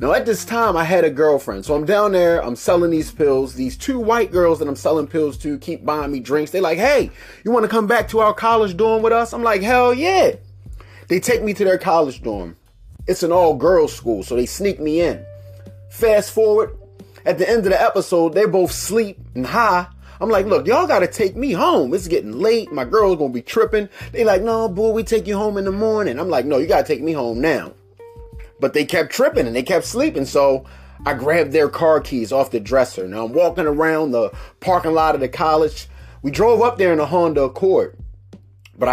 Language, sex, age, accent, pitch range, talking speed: English, male, 30-49, American, 125-195 Hz, 235 wpm